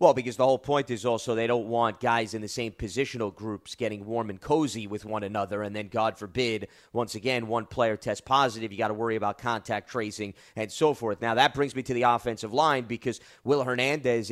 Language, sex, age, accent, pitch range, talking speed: English, male, 30-49, American, 115-140 Hz, 225 wpm